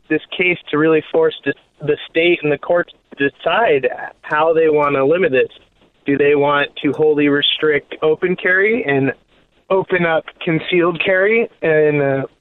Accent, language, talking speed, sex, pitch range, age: American, English, 160 wpm, male, 145-170 Hz, 20-39